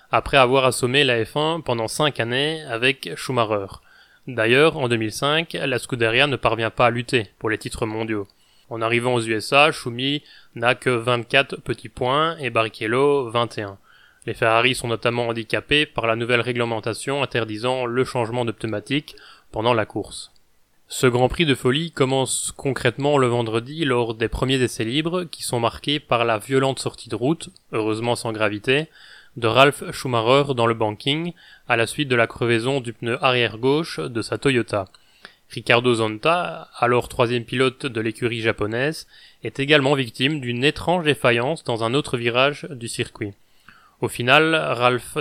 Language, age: French, 20-39